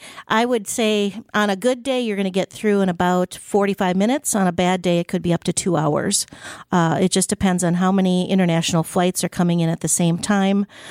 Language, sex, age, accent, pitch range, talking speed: English, female, 40-59, American, 165-185 Hz, 235 wpm